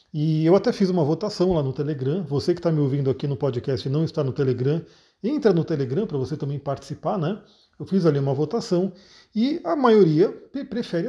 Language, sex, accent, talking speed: Portuguese, male, Brazilian, 210 wpm